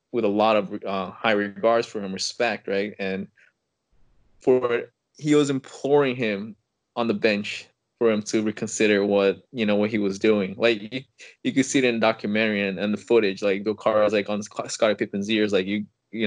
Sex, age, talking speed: male, 20-39, 205 wpm